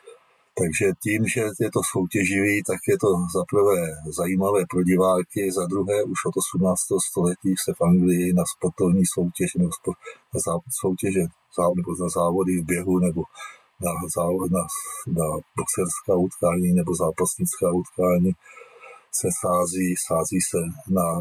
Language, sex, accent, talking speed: Czech, male, native, 125 wpm